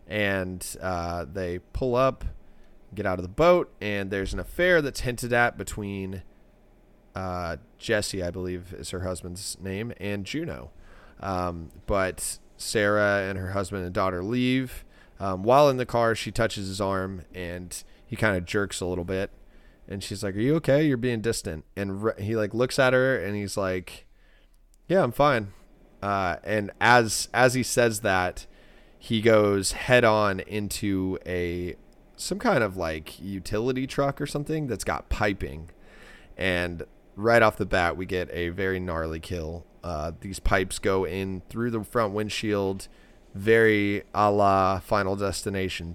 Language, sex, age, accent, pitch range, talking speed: English, male, 30-49, American, 90-110 Hz, 165 wpm